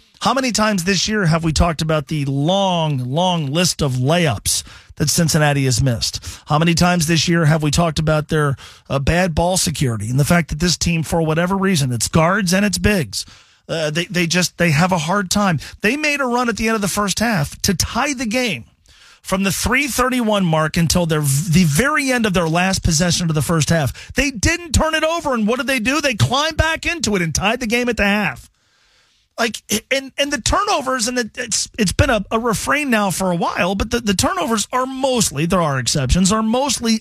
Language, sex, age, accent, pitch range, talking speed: English, male, 40-59, American, 145-220 Hz, 225 wpm